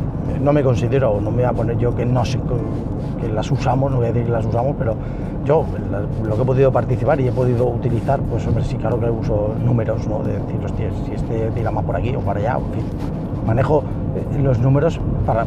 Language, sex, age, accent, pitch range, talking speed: Spanish, male, 40-59, Spanish, 115-140 Hz, 225 wpm